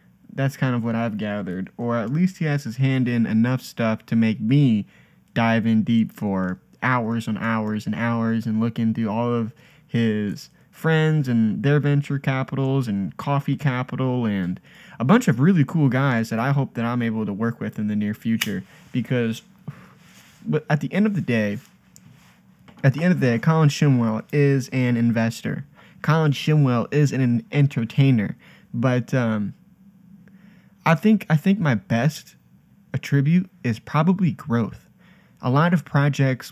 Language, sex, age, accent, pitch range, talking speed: English, male, 20-39, American, 115-145 Hz, 170 wpm